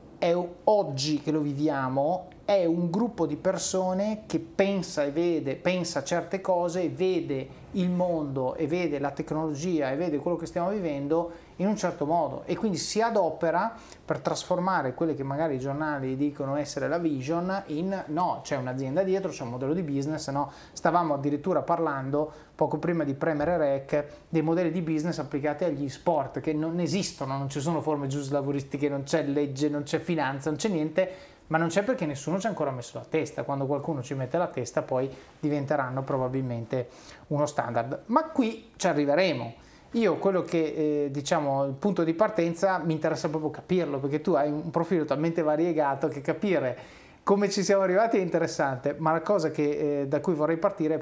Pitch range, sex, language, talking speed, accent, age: 145-175 Hz, male, Italian, 185 wpm, native, 30-49